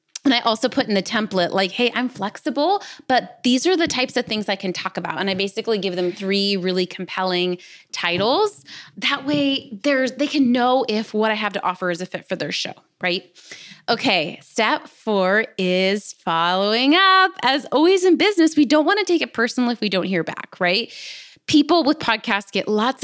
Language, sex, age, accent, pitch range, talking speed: English, female, 20-39, American, 190-275 Hz, 200 wpm